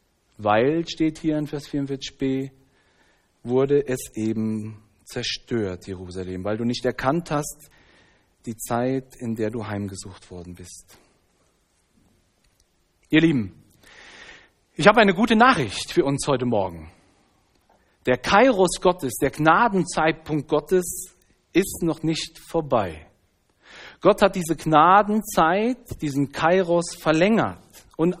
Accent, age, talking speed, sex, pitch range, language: German, 40-59, 115 wpm, male, 120-190 Hz, German